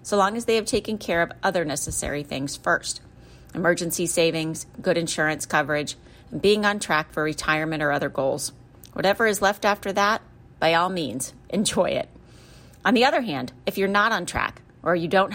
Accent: American